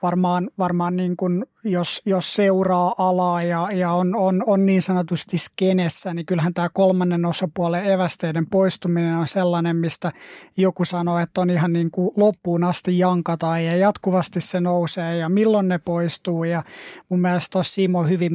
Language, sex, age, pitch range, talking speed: Finnish, male, 20-39, 170-190 Hz, 160 wpm